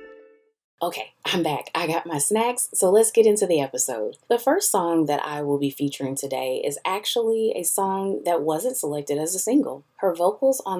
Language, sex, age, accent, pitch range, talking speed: English, female, 20-39, American, 145-225 Hz, 195 wpm